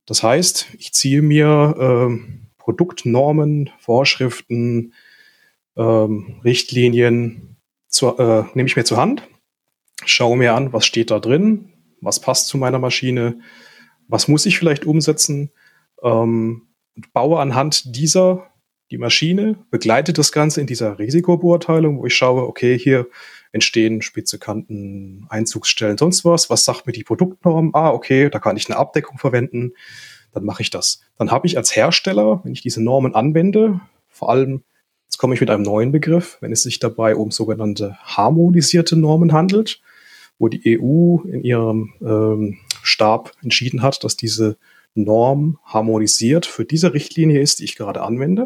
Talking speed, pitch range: 150 wpm, 115-155 Hz